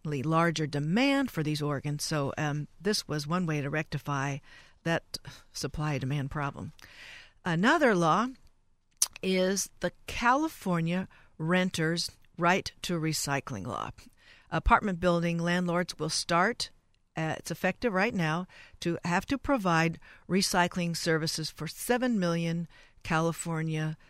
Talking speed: 115 wpm